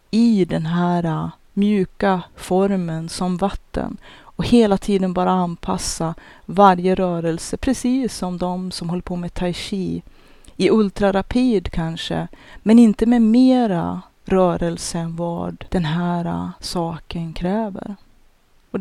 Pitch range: 165-195 Hz